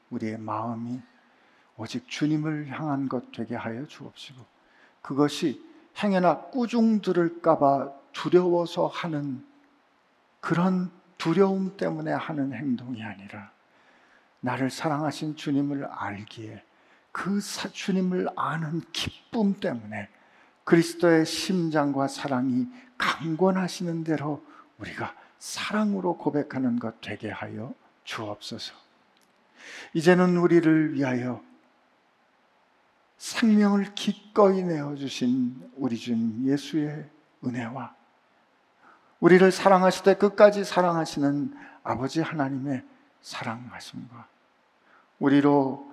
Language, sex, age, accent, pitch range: Korean, male, 50-69, native, 125-180 Hz